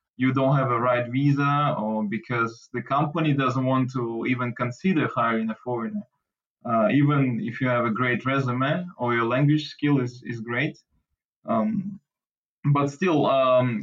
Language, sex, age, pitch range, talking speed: English, male, 20-39, 125-150 Hz, 160 wpm